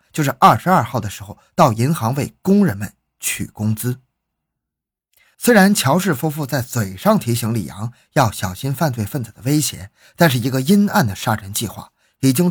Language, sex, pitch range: Chinese, male, 110-155 Hz